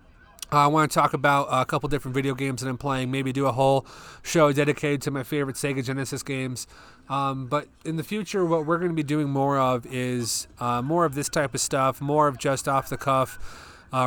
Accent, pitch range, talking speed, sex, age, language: American, 130-160 Hz, 225 wpm, male, 30-49, English